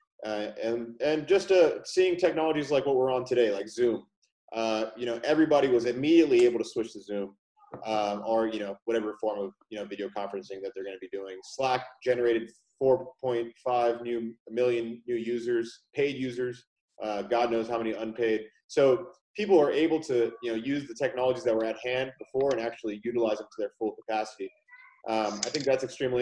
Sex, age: male, 30-49